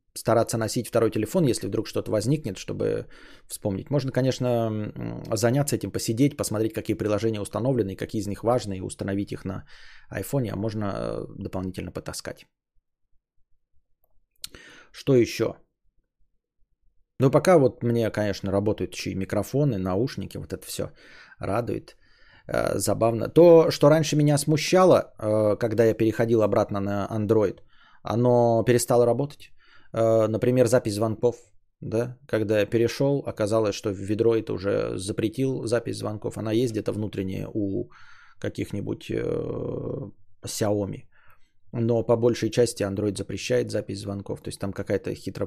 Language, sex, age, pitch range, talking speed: Bulgarian, male, 20-39, 100-120 Hz, 130 wpm